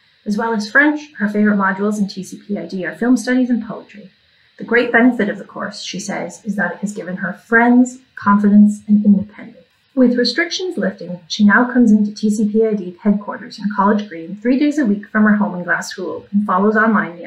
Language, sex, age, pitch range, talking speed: English, female, 30-49, 200-250 Hz, 200 wpm